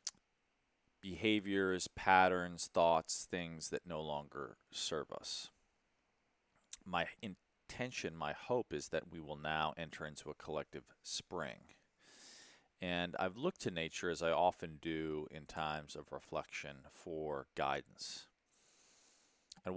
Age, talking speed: 30-49, 120 wpm